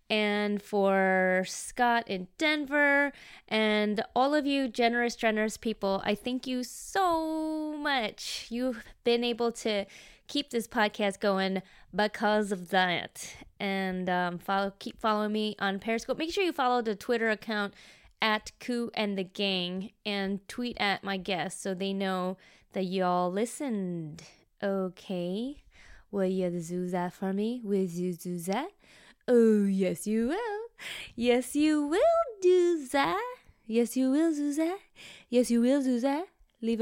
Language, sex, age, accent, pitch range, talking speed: English, female, 20-39, American, 195-255 Hz, 145 wpm